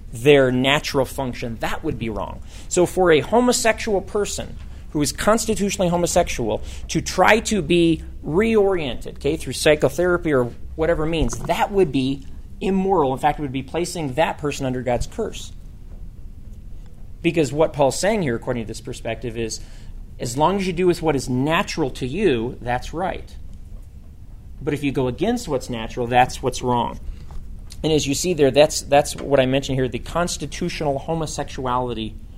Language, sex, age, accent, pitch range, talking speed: English, male, 40-59, American, 115-155 Hz, 165 wpm